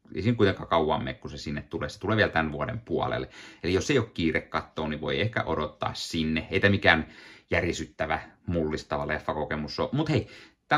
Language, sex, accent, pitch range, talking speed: Finnish, male, native, 80-105 Hz, 195 wpm